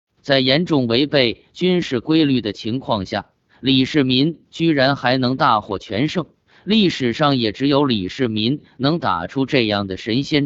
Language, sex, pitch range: Chinese, male, 115-150 Hz